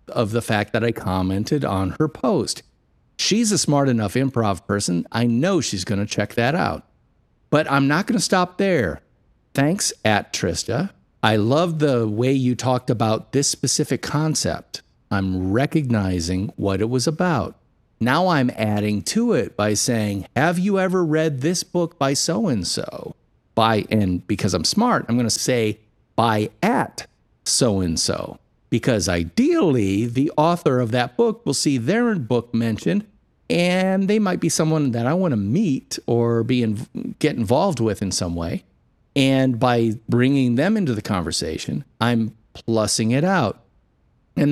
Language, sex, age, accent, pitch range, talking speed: English, male, 50-69, American, 105-150 Hz, 155 wpm